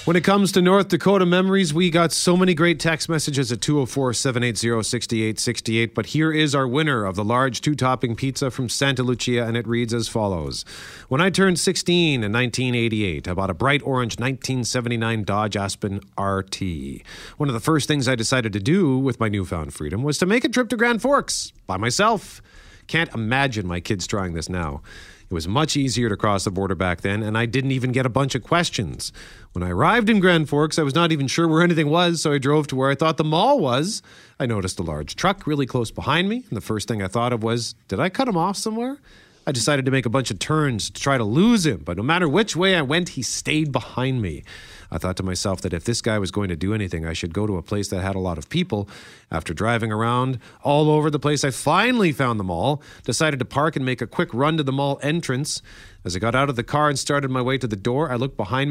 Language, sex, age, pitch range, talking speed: English, male, 40-59, 110-160 Hz, 245 wpm